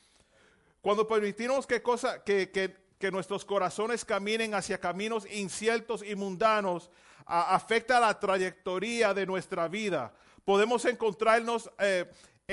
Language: Spanish